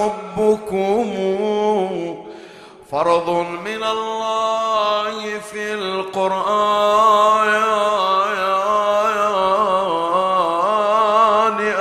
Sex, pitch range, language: male, 185-225 Hz, Arabic